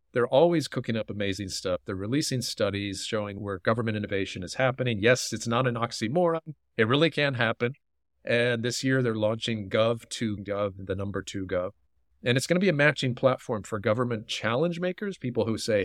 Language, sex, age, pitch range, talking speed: English, male, 40-59, 100-125 Hz, 185 wpm